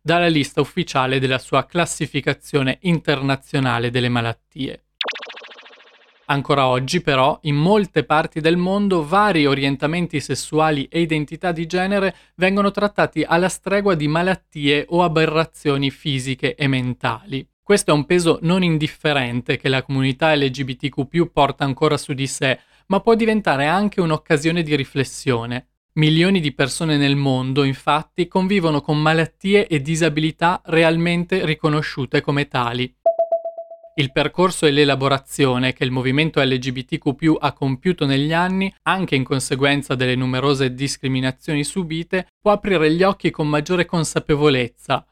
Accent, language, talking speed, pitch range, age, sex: native, Italian, 130 wpm, 135-170 Hz, 20-39, male